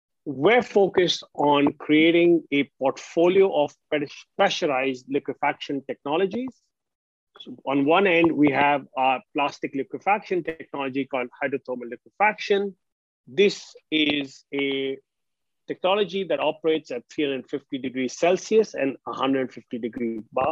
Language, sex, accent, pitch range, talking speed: English, male, Indian, 130-165 Hz, 110 wpm